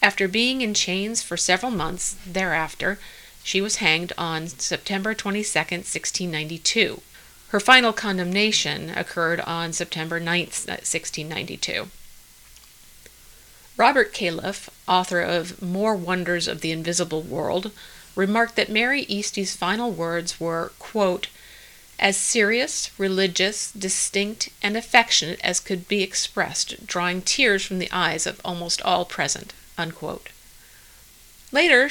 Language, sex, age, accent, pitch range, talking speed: English, female, 40-59, American, 165-205 Hz, 115 wpm